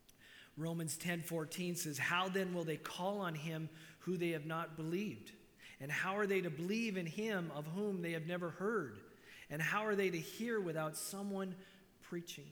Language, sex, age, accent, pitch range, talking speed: English, male, 40-59, American, 145-185 Hz, 185 wpm